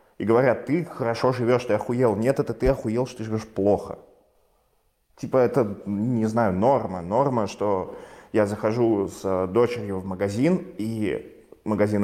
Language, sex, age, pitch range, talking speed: Russian, male, 20-39, 95-115 Hz, 150 wpm